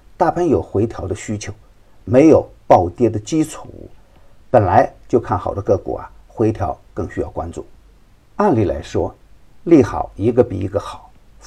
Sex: male